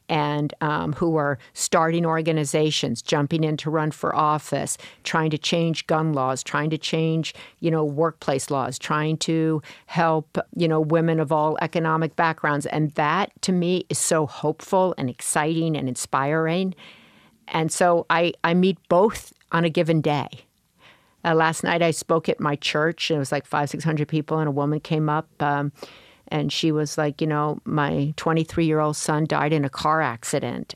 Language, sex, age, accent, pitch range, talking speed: English, female, 50-69, American, 150-170 Hz, 180 wpm